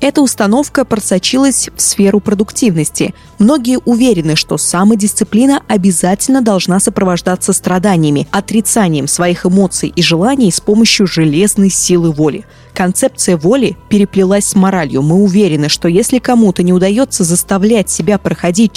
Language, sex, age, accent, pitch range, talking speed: Russian, female, 20-39, native, 175-225 Hz, 125 wpm